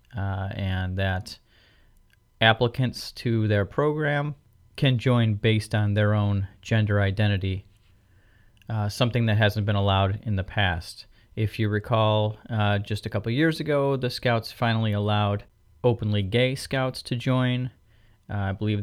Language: English